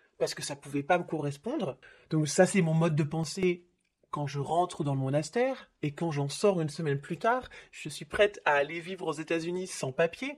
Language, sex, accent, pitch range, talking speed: French, male, French, 140-180 Hz, 230 wpm